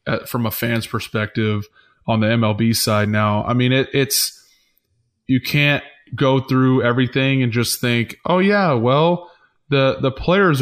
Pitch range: 115-140 Hz